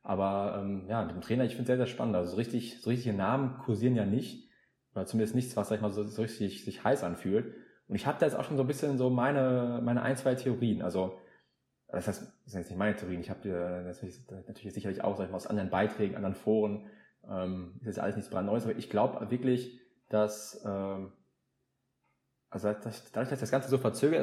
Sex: male